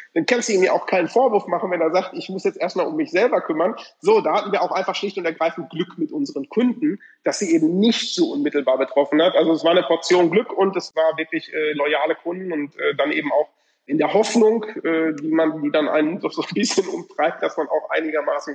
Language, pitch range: German, 140-185 Hz